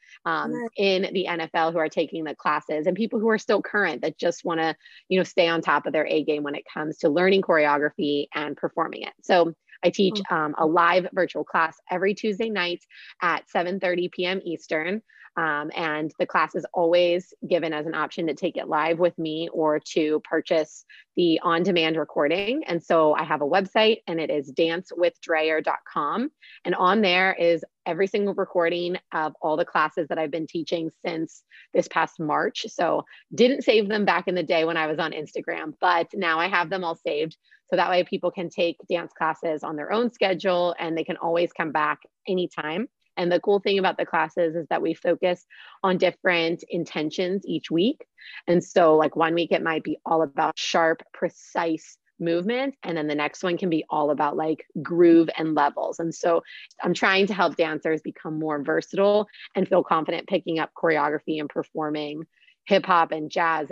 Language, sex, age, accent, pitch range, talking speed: English, female, 20-39, American, 155-180 Hz, 195 wpm